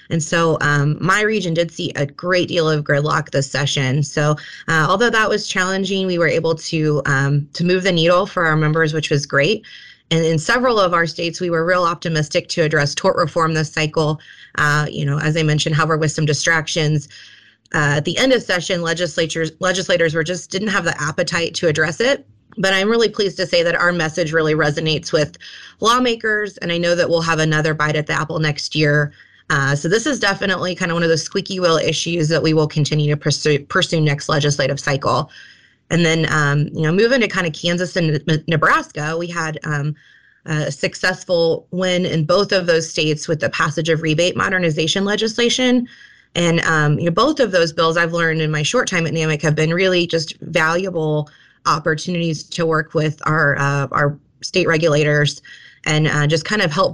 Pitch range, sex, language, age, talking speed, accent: 150-180 Hz, female, English, 20-39, 200 wpm, American